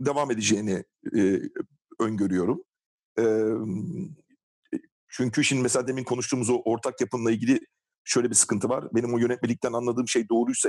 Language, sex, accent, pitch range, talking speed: Turkish, male, native, 115-130 Hz, 135 wpm